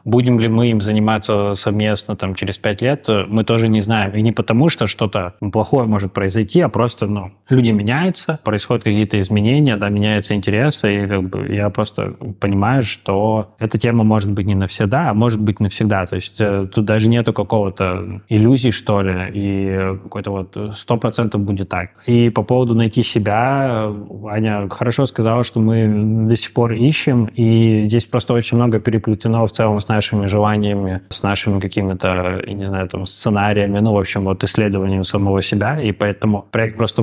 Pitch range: 100-120 Hz